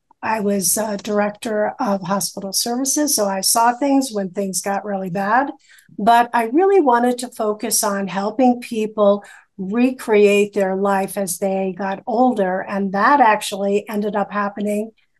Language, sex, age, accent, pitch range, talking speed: English, female, 50-69, American, 200-240 Hz, 145 wpm